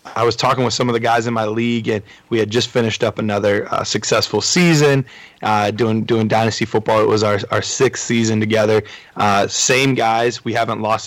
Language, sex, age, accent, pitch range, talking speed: English, male, 20-39, American, 110-130 Hz, 210 wpm